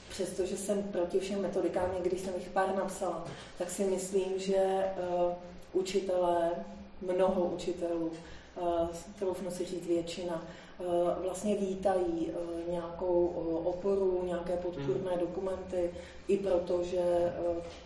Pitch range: 170-185 Hz